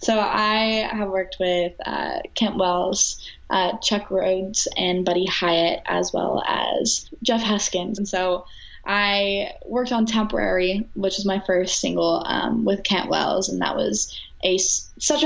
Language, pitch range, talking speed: English, 180-205 Hz, 155 wpm